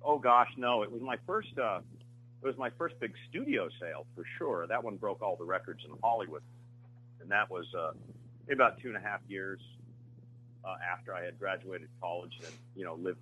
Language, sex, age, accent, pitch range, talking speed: English, male, 40-59, American, 100-120 Hz, 210 wpm